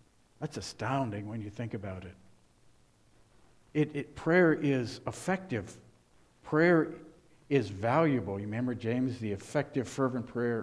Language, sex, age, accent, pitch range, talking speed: English, male, 60-79, American, 115-150 Hz, 125 wpm